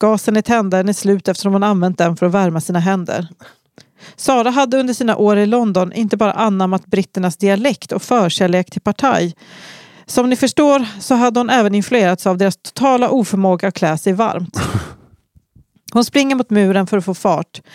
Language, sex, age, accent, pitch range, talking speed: English, female, 40-59, Swedish, 185-235 Hz, 185 wpm